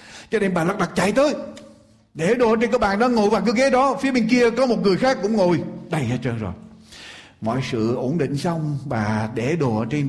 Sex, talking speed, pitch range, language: male, 240 wpm, 135-220 Hz, Ukrainian